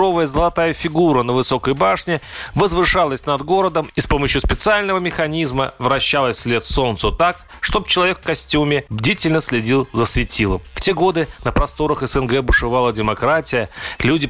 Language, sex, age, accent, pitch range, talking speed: Russian, male, 30-49, native, 120-165 Hz, 145 wpm